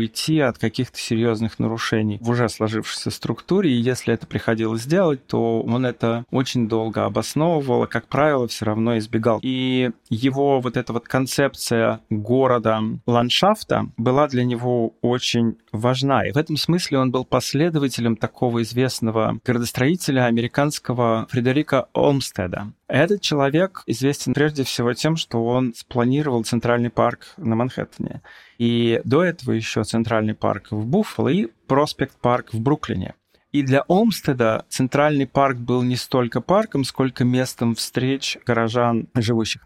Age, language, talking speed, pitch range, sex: 20-39, Russian, 140 wpm, 115-135 Hz, male